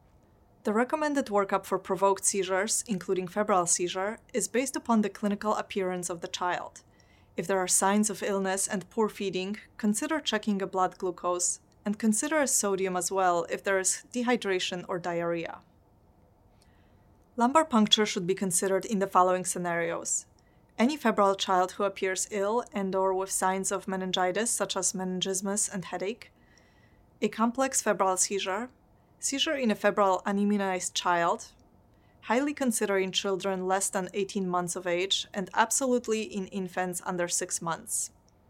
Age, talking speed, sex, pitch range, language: 30-49, 150 wpm, female, 180-210 Hz, English